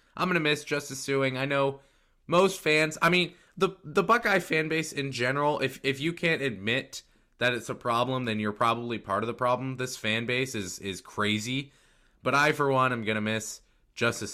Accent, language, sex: American, English, male